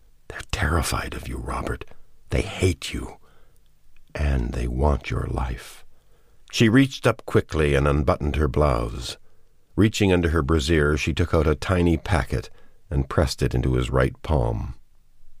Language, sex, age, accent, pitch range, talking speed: English, male, 60-79, American, 70-95 Hz, 150 wpm